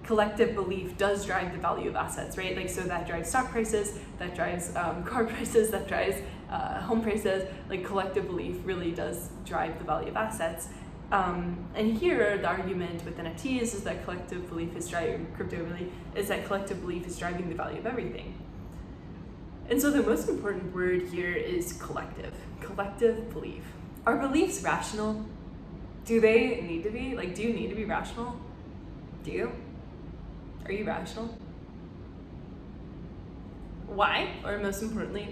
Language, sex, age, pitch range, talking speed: English, female, 10-29, 175-220 Hz, 160 wpm